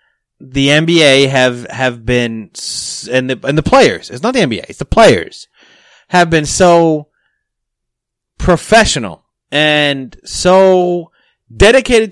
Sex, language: male, English